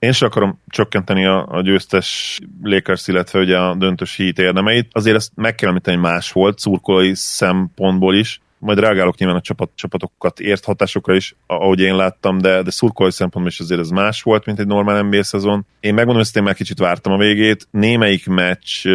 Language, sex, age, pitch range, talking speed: Hungarian, male, 30-49, 90-100 Hz, 185 wpm